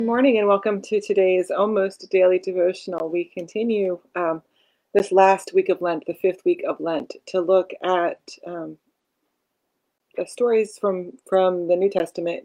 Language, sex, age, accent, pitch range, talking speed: English, female, 30-49, American, 175-205 Hz, 160 wpm